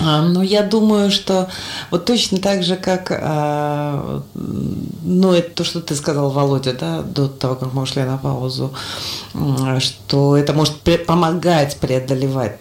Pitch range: 130-185 Hz